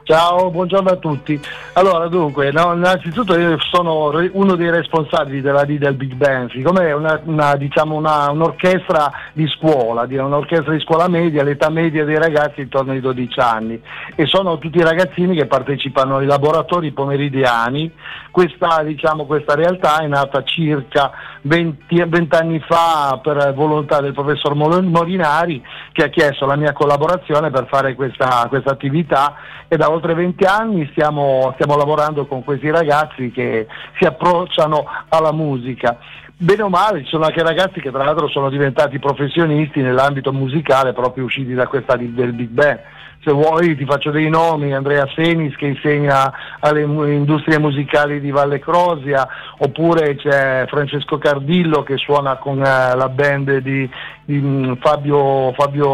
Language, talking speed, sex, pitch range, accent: Italian, 155 wpm, male, 140-165 Hz, native